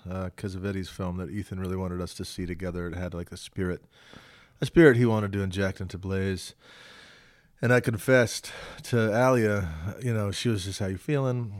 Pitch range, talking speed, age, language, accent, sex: 90-105 Hz, 200 wpm, 30-49, English, American, male